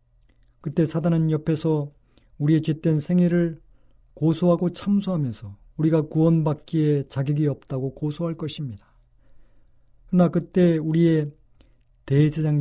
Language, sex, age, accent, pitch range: Korean, male, 40-59, native, 120-175 Hz